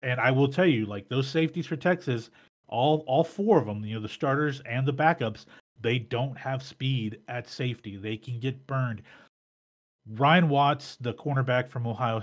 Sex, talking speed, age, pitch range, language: male, 185 wpm, 30-49, 115-150 Hz, English